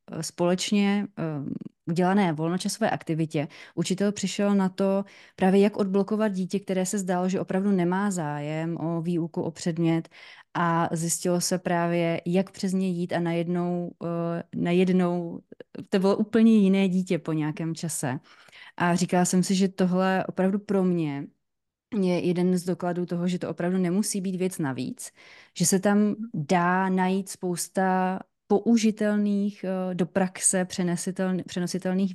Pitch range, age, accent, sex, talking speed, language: 165-195 Hz, 20-39, native, female, 140 wpm, Czech